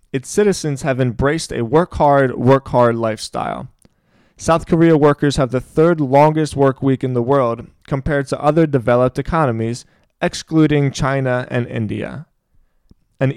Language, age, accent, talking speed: English, 20-39, American, 135 wpm